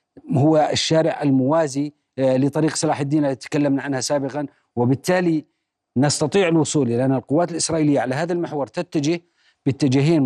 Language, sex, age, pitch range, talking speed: Arabic, male, 40-59, 130-155 Hz, 130 wpm